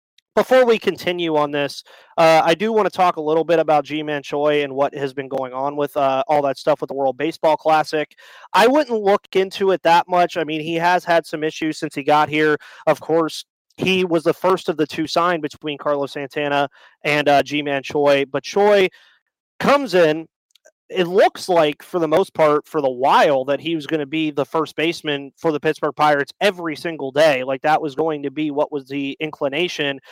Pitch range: 150-175 Hz